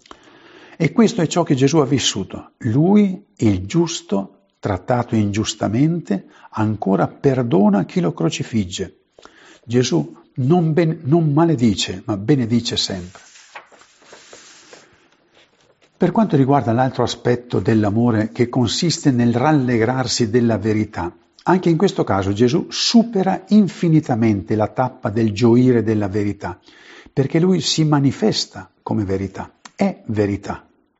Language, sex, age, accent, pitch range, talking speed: Italian, male, 50-69, native, 110-160 Hz, 110 wpm